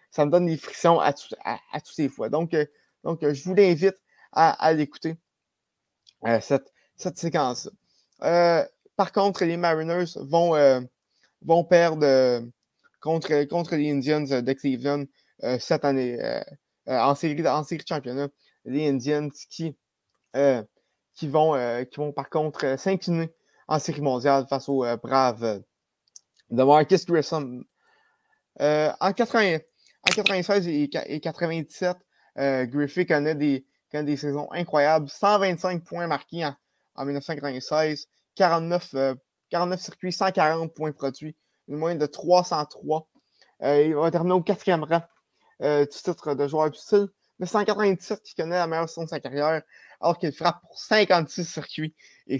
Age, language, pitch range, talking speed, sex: 20-39, French, 140-175 Hz, 160 wpm, male